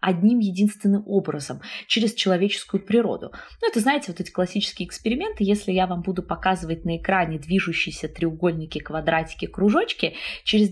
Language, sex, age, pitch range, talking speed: Russian, female, 20-39, 160-210 Hz, 140 wpm